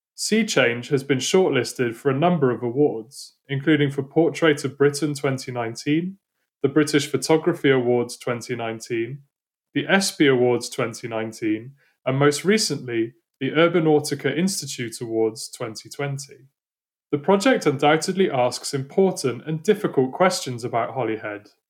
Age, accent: 20-39, British